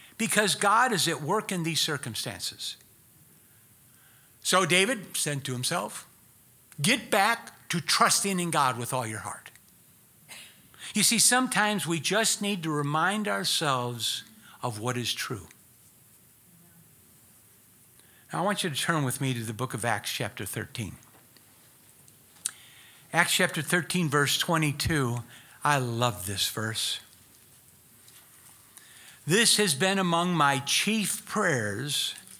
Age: 60-79